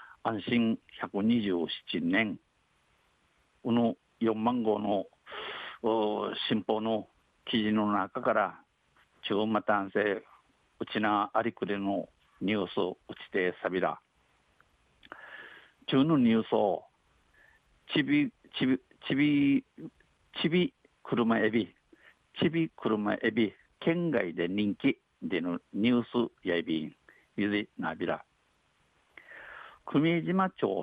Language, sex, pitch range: Japanese, male, 105-140 Hz